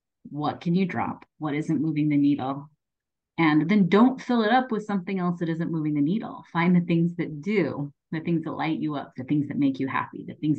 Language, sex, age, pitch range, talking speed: English, female, 30-49, 145-205 Hz, 240 wpm